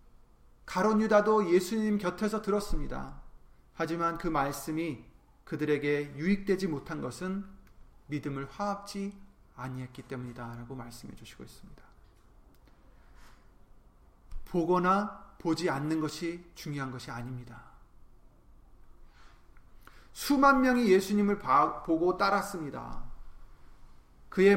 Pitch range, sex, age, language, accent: 135-205 Hz, male, 30-49, Korean, native